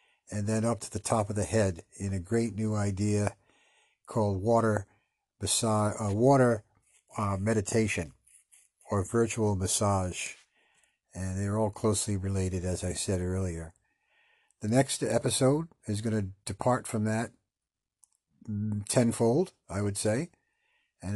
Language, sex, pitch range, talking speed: English, male, 100-115 Hz, 135 wpm